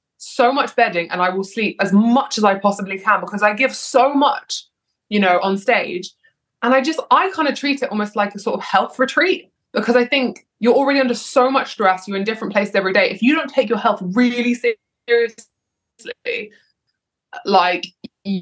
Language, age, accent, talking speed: English, 20-39, British, 200 wpm